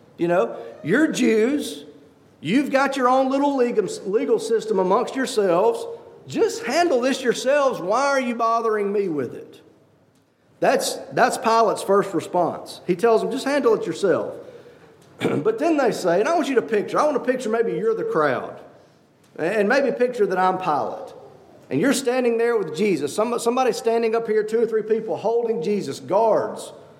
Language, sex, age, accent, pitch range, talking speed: English, male, 40-59, American, 190-285 Hz, 175 wpm